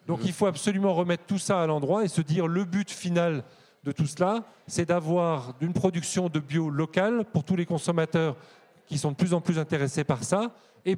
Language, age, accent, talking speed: French, 30-49, French, 215 wpm